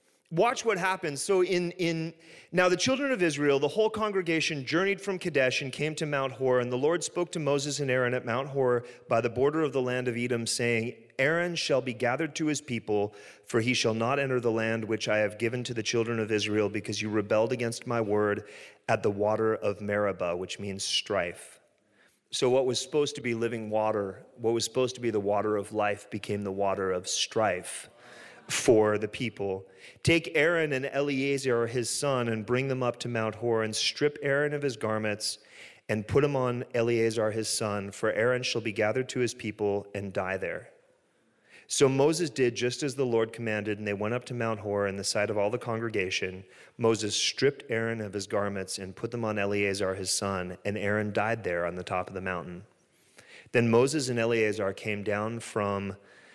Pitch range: 105-135 Hz